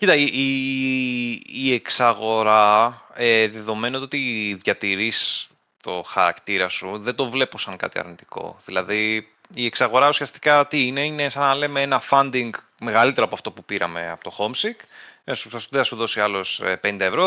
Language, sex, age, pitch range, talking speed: Greek, male, 30-49, 105-145 Hz, 155 wpm